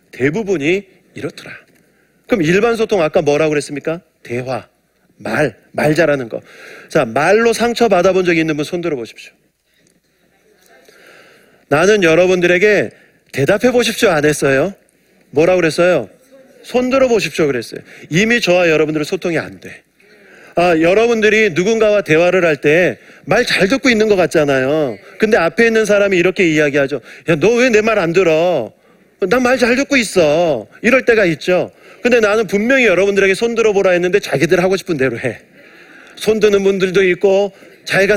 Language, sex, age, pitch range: Korean, male, 40-59, 160-215 Hz